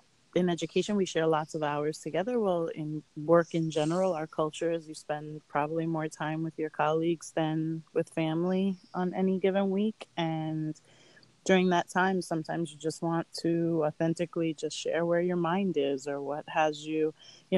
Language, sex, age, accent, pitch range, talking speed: English, female, 30-49, American, 155-185 Hz, 180 wpm